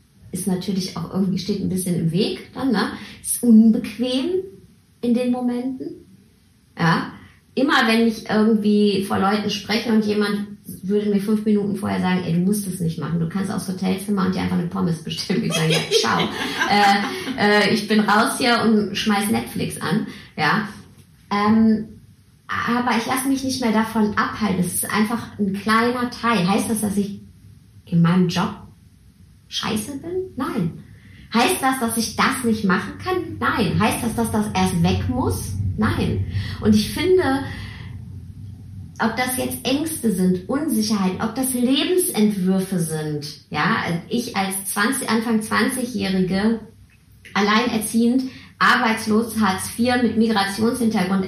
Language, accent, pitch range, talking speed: German, German, 180-230 Hz, 155 wpm